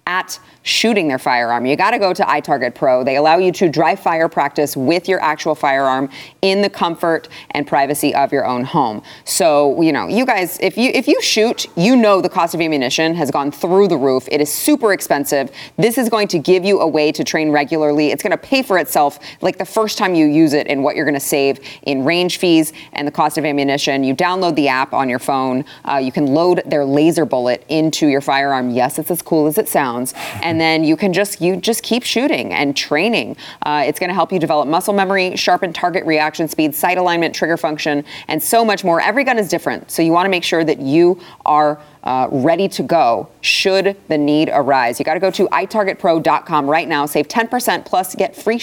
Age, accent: 30-49, American